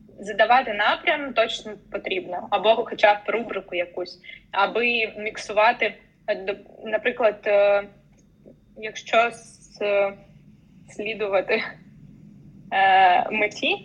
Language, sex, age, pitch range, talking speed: Ukrainian, female, 20-39, 195-235 Hz, 65 wpm